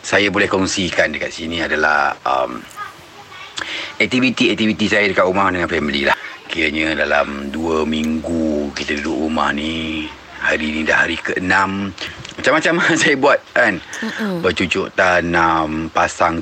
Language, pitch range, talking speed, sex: Malay, 80-90 Hz, 125 wpm, male